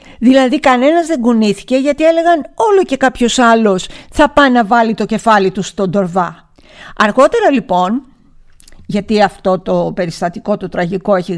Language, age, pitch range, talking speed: Greek, 50-69, 195-265 Hz, 150 wpm